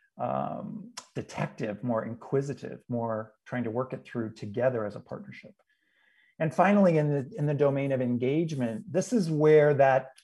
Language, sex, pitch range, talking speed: English, male, 125-170 Hz, 160 wpm